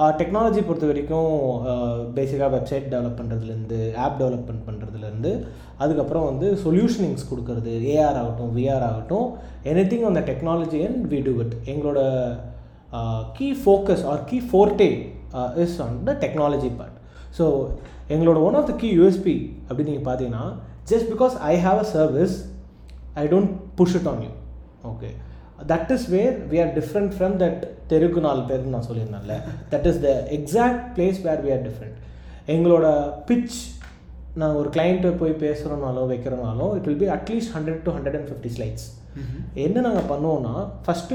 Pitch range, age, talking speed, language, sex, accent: 120-180 Hz, 20-39, 120 wpm, English, male, Indian